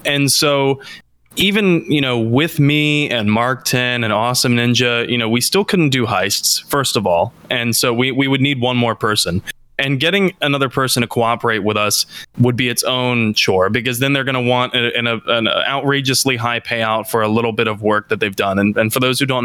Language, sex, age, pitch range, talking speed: English, male, 20-39, 115-140 Hz, 220 wpm